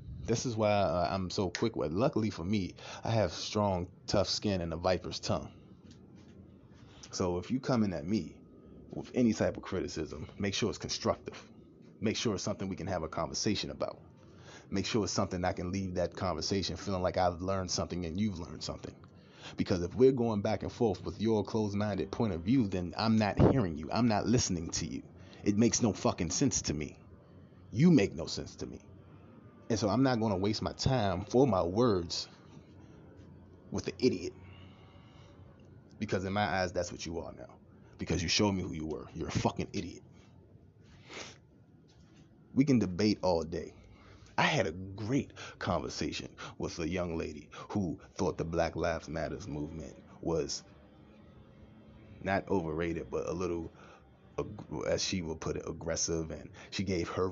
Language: English